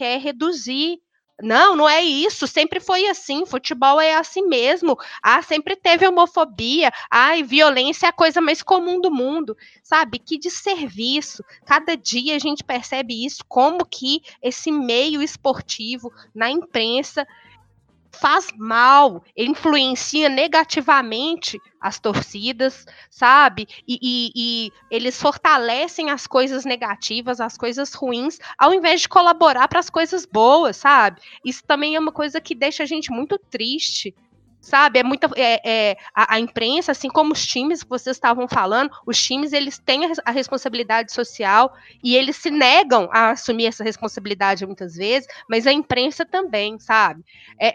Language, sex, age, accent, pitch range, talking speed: Portuguese, female, 20-39, Brazilian, 235-310 Hz, 150 wpm